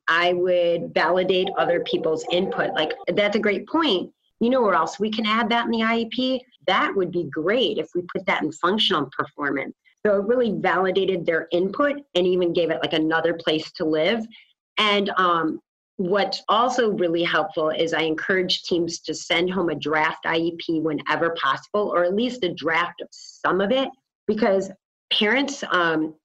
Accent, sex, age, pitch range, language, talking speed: American, female, 30-49, 170-220 Hz, English, 180 wpm